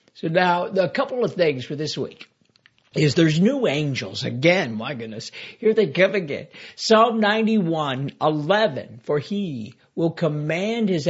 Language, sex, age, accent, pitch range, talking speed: English, male, 60-79, American, 145-215 Hz, 150 wpm